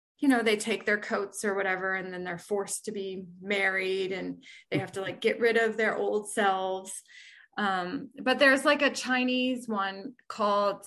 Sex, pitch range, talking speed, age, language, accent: female, 200-255 Hz, 190 wpm, 20-39, English, American